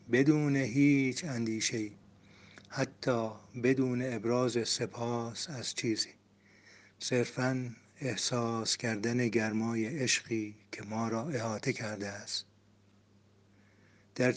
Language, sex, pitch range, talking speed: Persian, male, 105-130 Hz, 90 wpm